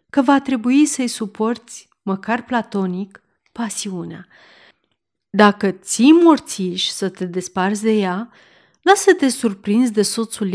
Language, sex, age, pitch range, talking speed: Romanian, female, 30-49, 190-230 Hz, 115 wpm